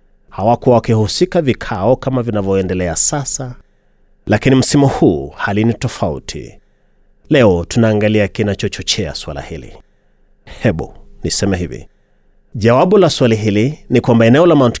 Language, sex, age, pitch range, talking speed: Swahili, male, 30-49, 105-125 Hz, 110 wpm